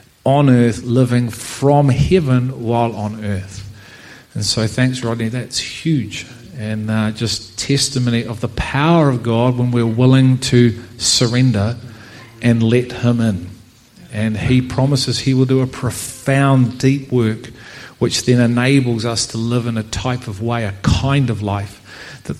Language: English